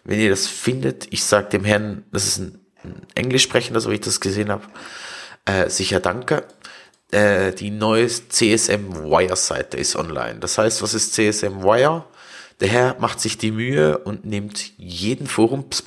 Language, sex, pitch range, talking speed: German, male, 95-115 Hz, 170 wpm